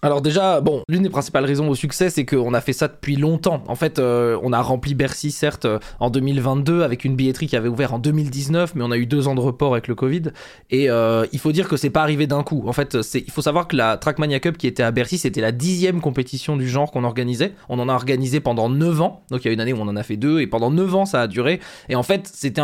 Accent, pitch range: French, 130-170 Hz